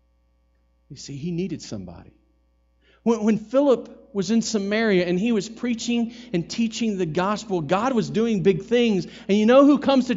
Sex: male